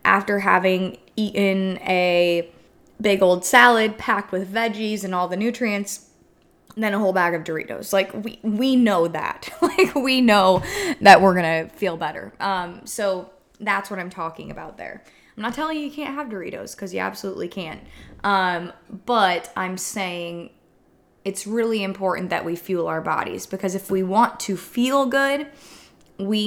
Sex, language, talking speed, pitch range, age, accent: female, English, 170 wpm, 180-220 Hz, 20-39, American